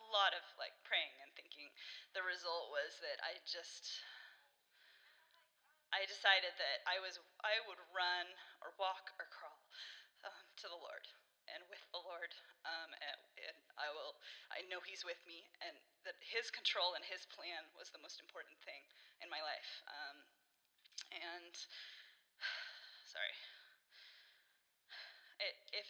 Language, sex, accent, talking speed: English, female, American, 140 wpm